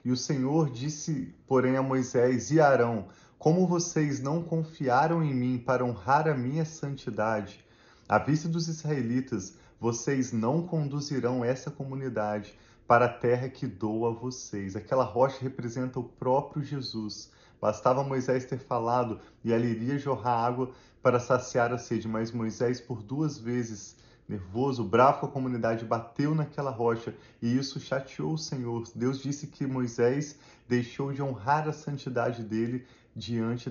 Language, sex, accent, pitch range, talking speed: Portuguese, male, Brazilian, 115-140 Hz, 150 wpm